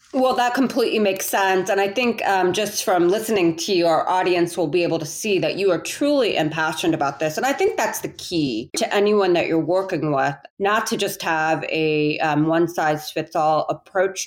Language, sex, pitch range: English, female, 160-220 Hz